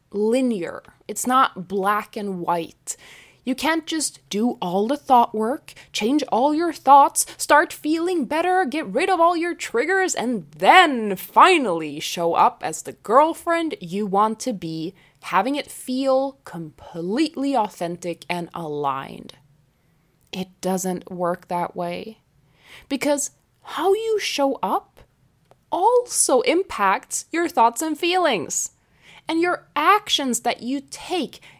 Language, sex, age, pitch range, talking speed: English, female, 20-39, 180-290 Hz, 130 wpm